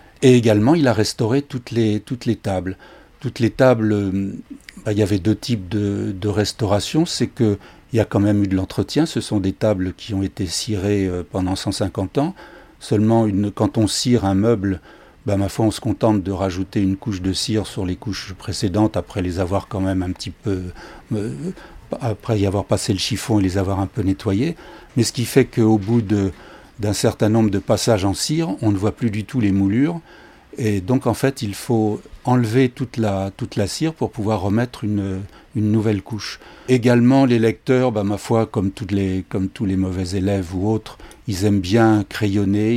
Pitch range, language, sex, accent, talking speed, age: 95-115 Hz, French, male, French, 205 wpm, 60-79